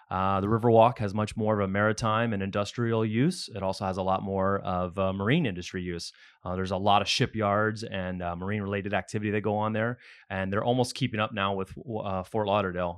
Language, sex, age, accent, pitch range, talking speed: English, male, 30-49, American, 100-115 Hz, 220 wpm